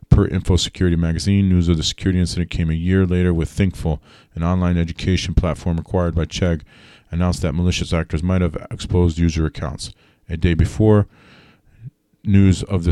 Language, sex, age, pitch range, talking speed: English, male, 40-59, 85-95 Hz, 165 wpm